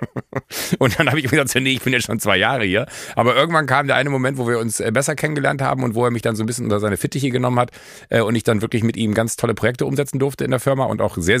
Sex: male